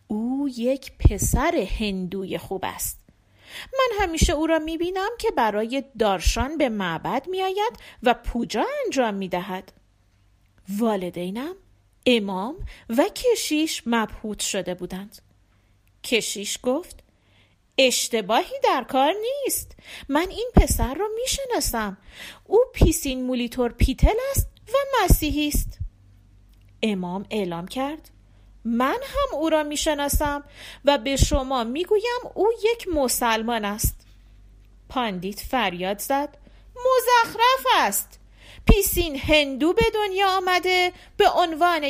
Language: Persian